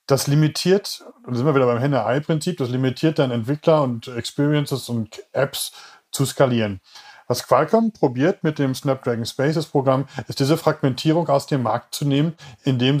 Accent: German